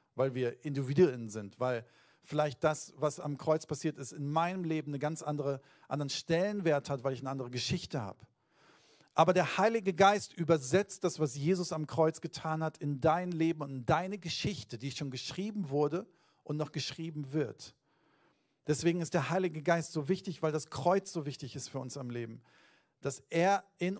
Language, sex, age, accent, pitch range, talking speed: German, male, 50-69, German, 140-175 Hz, 185 wpm